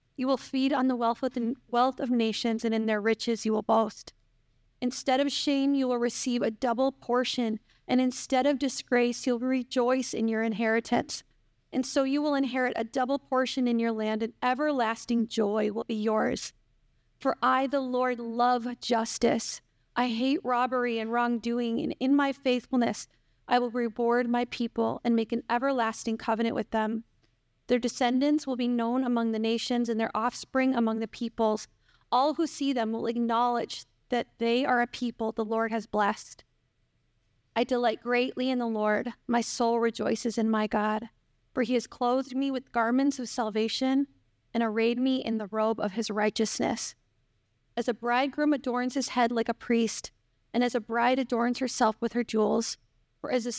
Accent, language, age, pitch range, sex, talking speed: American, English, 40-59, 225-255 Hz, female, 175 wpm